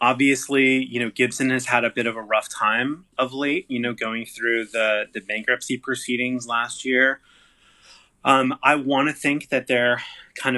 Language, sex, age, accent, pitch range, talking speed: English, male, 20-39, American, 110-130 Hz, 180 wpm